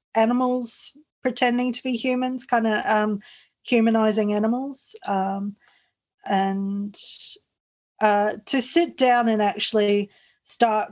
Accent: Australian